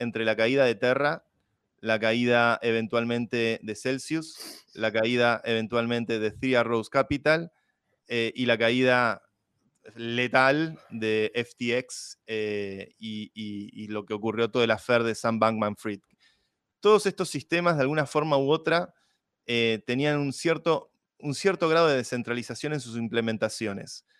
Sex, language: male, Spanish